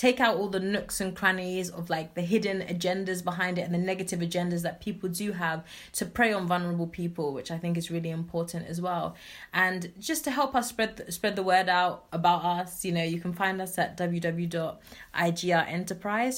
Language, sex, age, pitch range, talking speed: English, female, 20-39, 170-185 Hz, 205 wpm